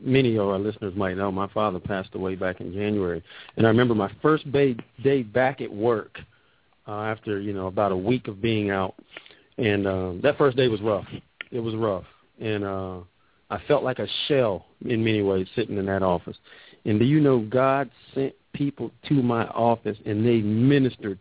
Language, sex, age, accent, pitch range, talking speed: English, male, 40-59, American, 105-130 Hz, 195 wpm